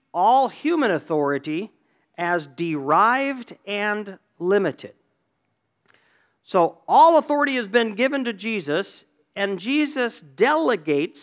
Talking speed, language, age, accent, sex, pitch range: 95 wpm, English, 50-69, American, male, 145-210 Hz